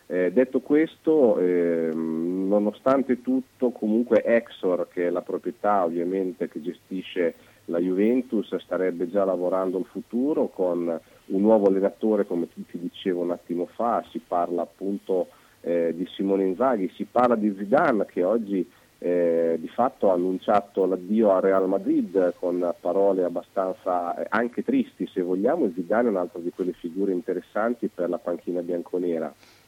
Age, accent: 40-59, native